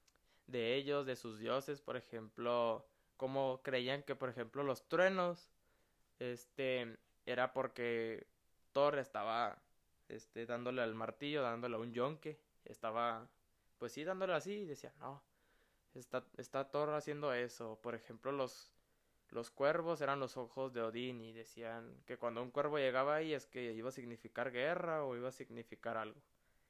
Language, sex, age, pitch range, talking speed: Spanish, male, 20-39, 120-150 Hz, 155 wpm